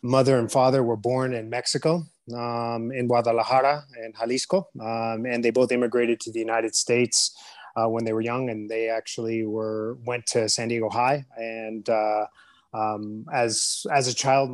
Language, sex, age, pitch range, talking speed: English, male, 30-49, 115-130 Hz, 175 wpm